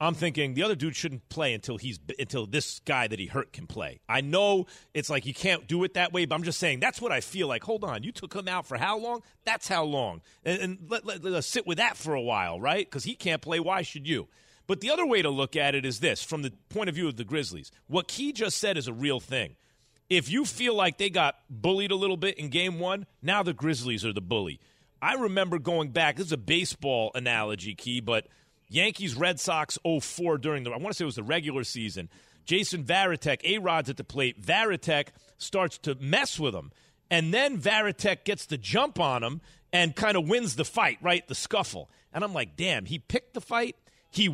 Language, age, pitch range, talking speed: English, 40-59, 145-200 Hz, 240 wpm